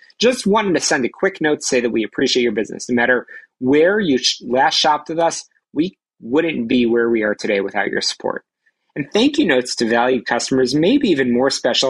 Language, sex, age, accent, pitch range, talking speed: English, male, 30-49, American, 120-175 Hz, 220 wpm